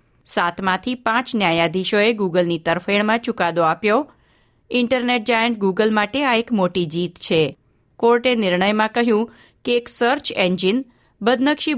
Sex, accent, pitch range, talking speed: female, native, 180-235 Hz, 120 wpm